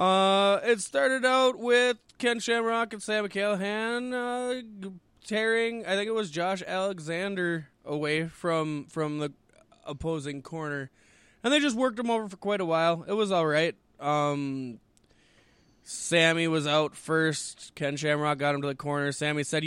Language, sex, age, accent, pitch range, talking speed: English, male, 20-39, American, 135-170 Hz, 160 wpm